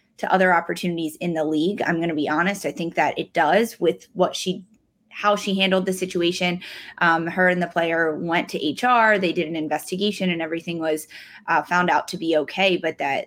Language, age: English, 20-39